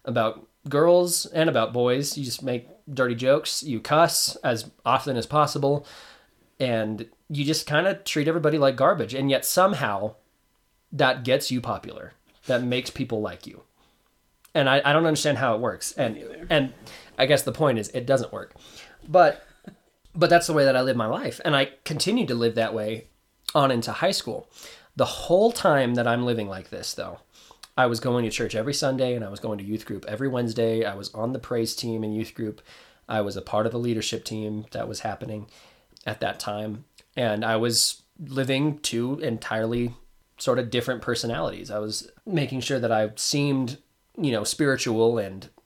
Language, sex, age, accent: English, male, 20-39, American